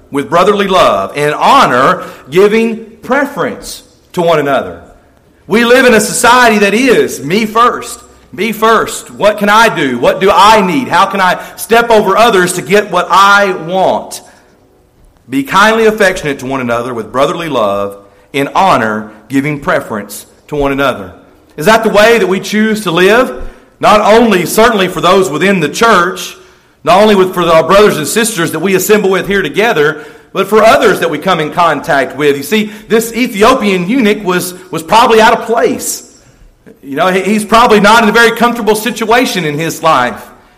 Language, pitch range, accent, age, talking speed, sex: English, 165-220 Hz, American, 40-59, 175 wpm, male